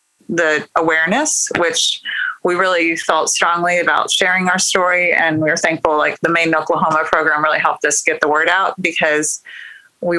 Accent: American